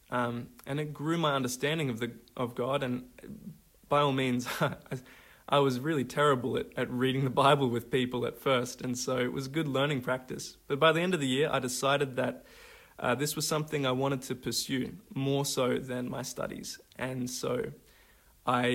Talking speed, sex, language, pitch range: 190 wpm, male, English, 125-140 Hz